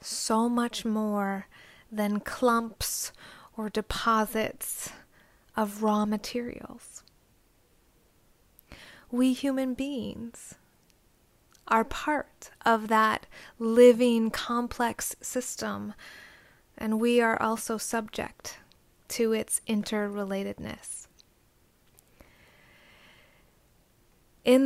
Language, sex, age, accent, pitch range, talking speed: English, female, 20-39, American, 215-240 Hz, 70 wpm